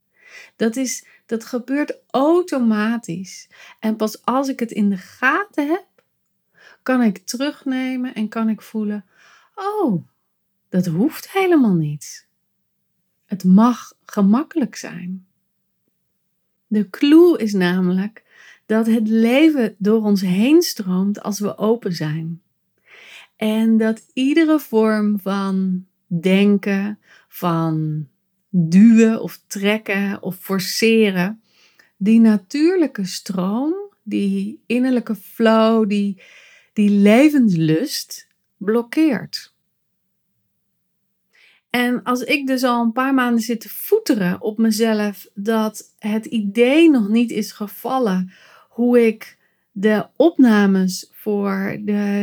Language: Dutch